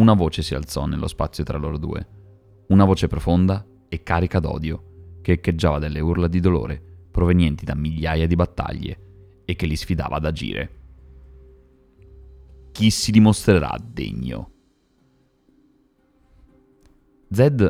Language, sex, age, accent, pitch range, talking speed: Italian, male, 30-49, native, 80-95 Hz, 125 wpm